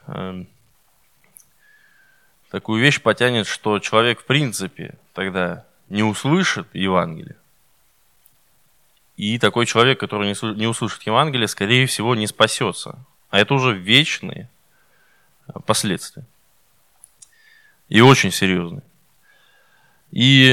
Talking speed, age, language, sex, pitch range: 90 wpm, 20-39, Russian, male, 105-145 Hz